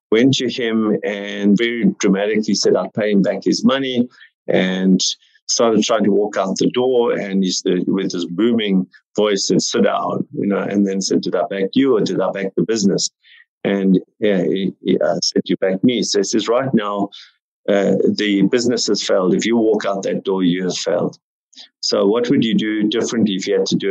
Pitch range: 95-115 Hz